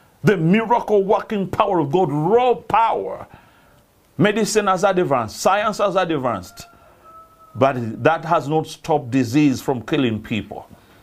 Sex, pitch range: male, 145-210 Hz